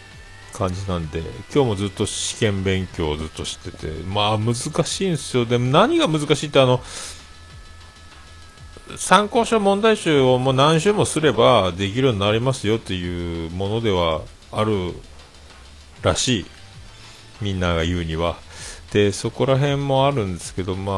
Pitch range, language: 85-130 Hz, Japanese